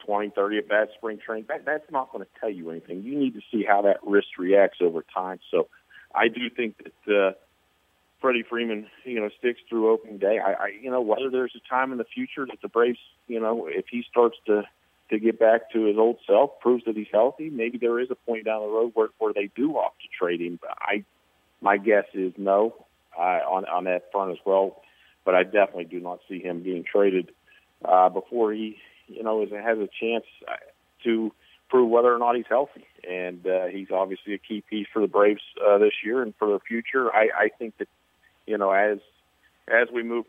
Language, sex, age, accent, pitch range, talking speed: English, male, 40-59, American, 100-120 Hz, 220 wpm